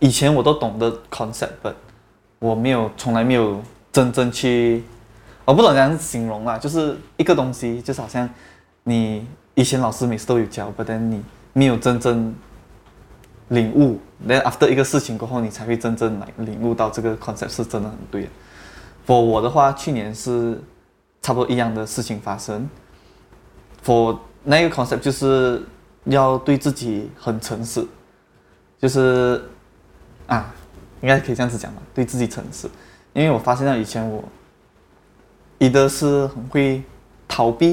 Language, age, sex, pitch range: Chinese, 20-39, male, 110-130 Hz